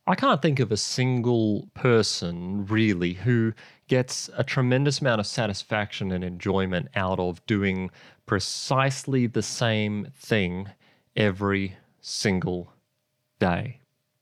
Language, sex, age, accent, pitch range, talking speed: English, male, 30-49, Australian, 95-125 Hz, 115 wpm